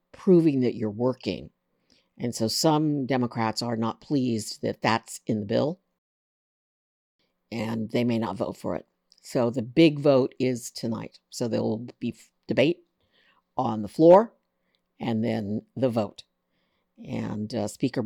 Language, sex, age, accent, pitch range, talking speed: English, female, 50-69, American, 115-150 Hz, 145 wpm